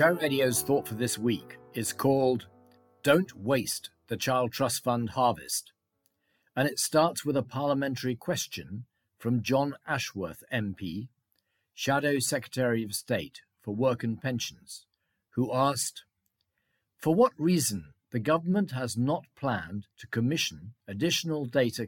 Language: English